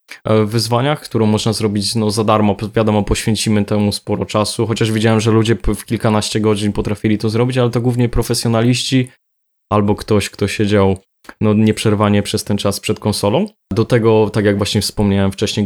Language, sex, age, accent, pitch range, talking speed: Polish, male, 20-39, native, 105-115 Hz, 160 wpm